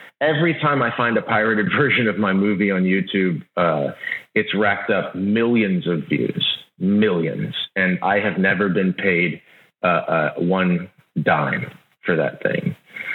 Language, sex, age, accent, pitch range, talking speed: English, male, 40-59, American, 90-115 Hz, 150 wpm